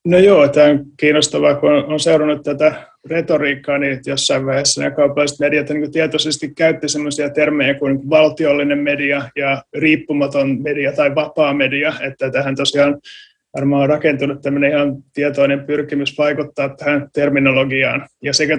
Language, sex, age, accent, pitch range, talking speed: Finnish, male, 20-39, native, 135-150 Hz, 140 wpm